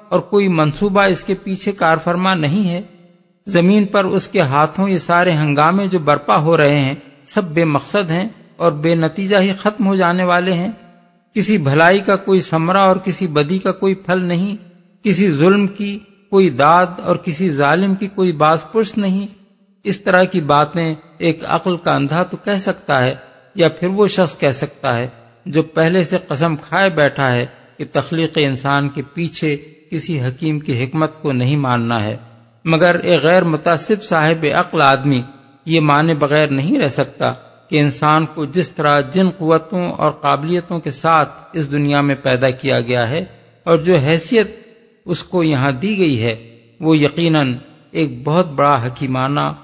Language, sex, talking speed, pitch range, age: Urdu, male, 180 wpm, 145-190 Hz, 50-69